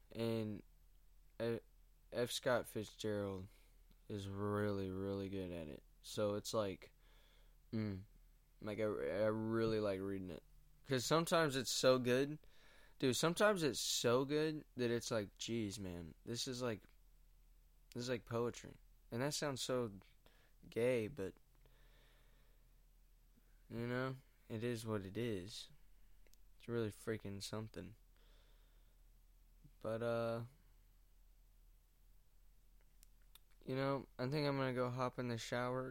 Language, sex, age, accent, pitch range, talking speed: English, male, 20-39, American, 100-125 Hz, 125 wpm